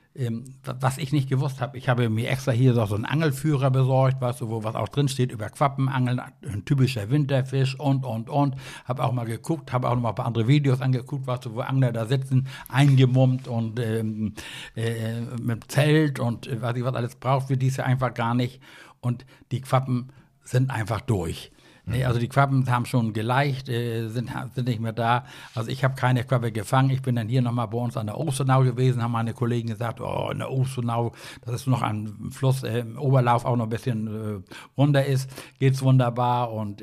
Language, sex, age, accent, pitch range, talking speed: German, male, 60-79, German, 120-135 Hz, 210 wpm